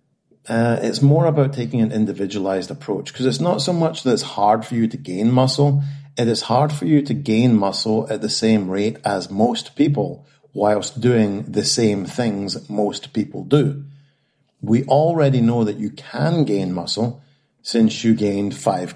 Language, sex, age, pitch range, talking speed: English, male, 40-59, 105-140 Hz, 175 wpm